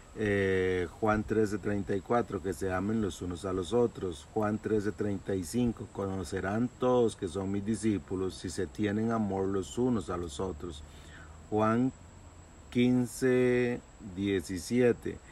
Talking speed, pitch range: 130 wpm, 90-110 Hz